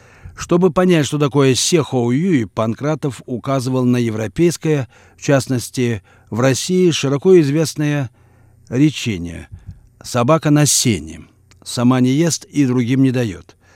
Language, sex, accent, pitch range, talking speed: Russian, male, native, 105-140 Hz, 115 wpm